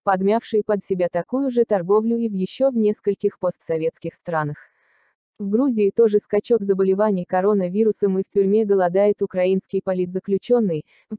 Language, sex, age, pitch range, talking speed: Ukrainian, female, 20-39, 185-220 Hz, 140 wpm